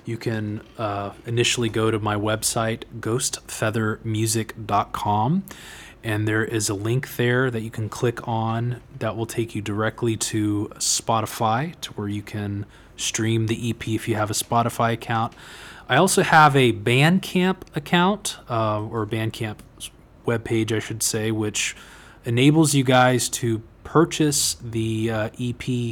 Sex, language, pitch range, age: male, English, 105-125 Hz, 20-39